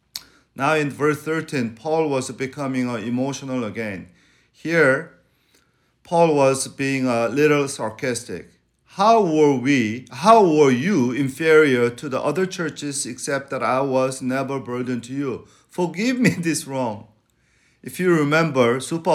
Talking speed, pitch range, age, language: 135 wpm, 120-155 Hz, 40-59, English